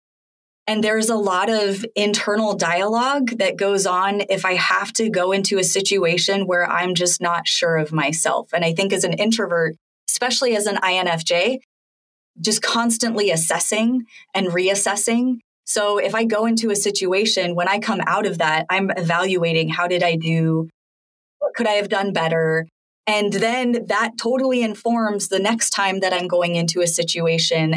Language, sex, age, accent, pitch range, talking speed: English, female, 20-39, American, 170-210 Hz, 170 wpm